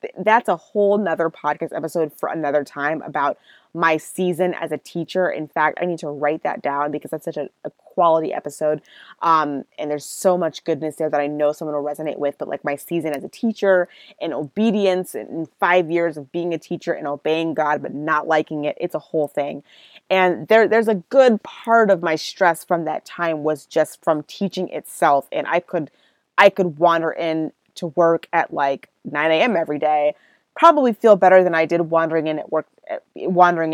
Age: 20-39